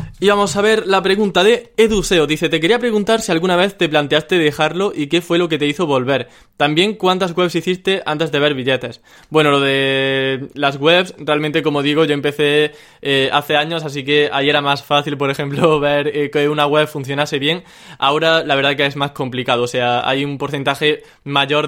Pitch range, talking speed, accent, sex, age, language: 135-155 Hz, 210 wpm, Spanish, male, 20-39, Spanish